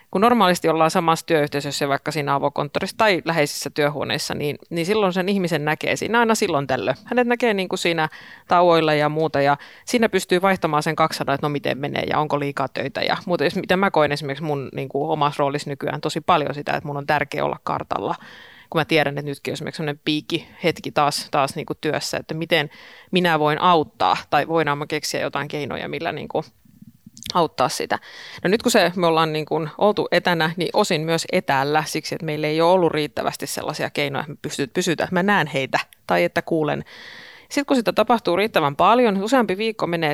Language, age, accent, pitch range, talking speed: Finnish, 30-49, native, 150-190 Hz, 205 wpm